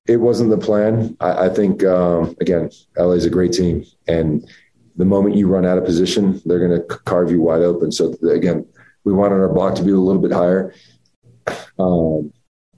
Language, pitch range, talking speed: English, 90-105 Hz, 200 wpm